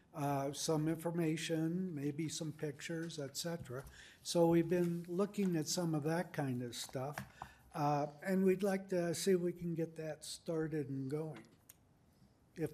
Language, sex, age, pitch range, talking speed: English, male, 60-79, 140-170 Hz, 155 wpm